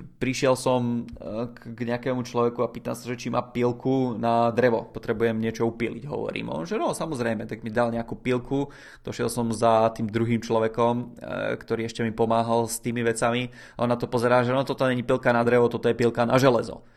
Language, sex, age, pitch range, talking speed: Czech, male, 20-39, 115-130 Hz, 195 wpm